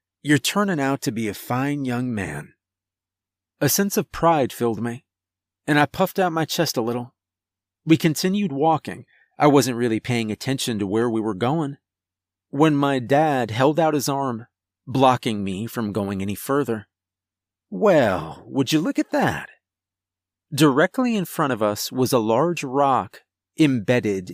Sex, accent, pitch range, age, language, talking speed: male, American, 95-145 Hz, 30-49, English, 160 wpm